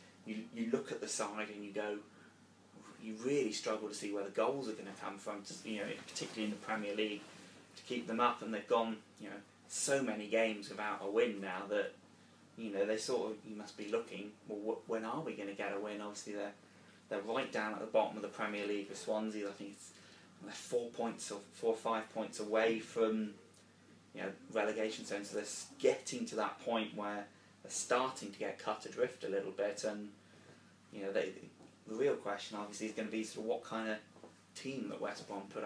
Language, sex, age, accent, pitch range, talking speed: English, male, 20-39, British, 100-110 Hz, 220 wpm